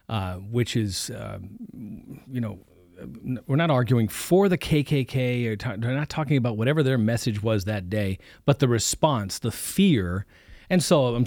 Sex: male